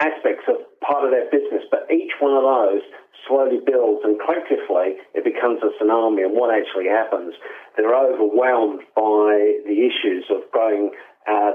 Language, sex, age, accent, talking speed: English, male, 50-69, British, 160 wpm